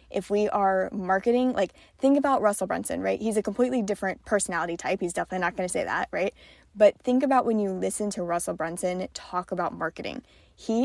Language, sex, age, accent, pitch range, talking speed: English, female, 10-29, American, 185-225 Hz, 205 wpm